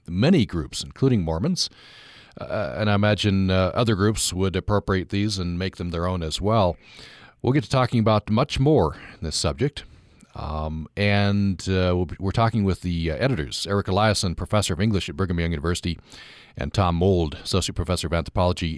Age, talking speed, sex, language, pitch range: 40-59, 175 wpm, male, English, 85-110 Hz